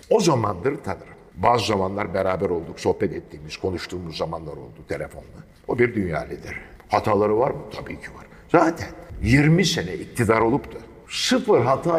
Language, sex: Turkish, male